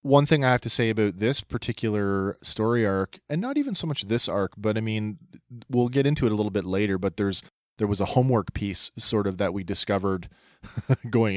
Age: 30-49